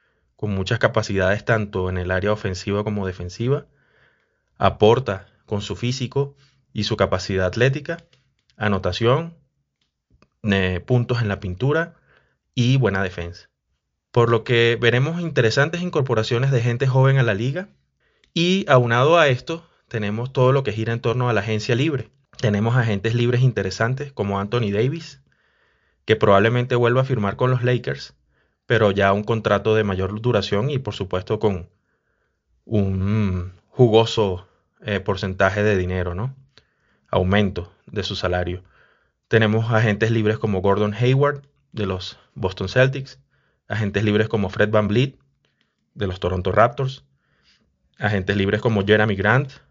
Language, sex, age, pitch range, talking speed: Spanish, male, 30-49, 100-130 Hz, 140 wpm